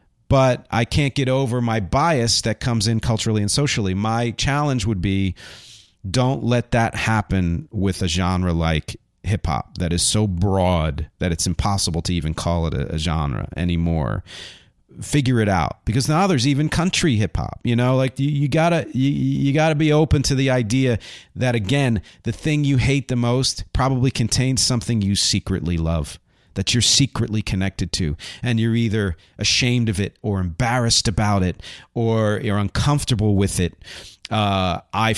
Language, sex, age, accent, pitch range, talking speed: English, male, 40-59, American, 95-125 Hz, 170 wpm